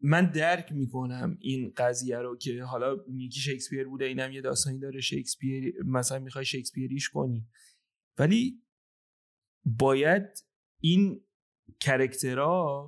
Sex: male